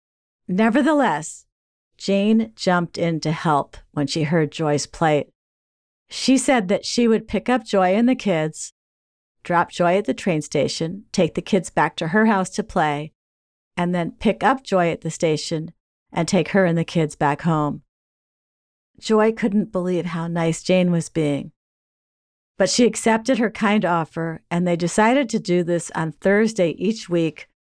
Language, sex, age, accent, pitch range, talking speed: English, female, 50-69, American, 160-205 Hz, 165 wpm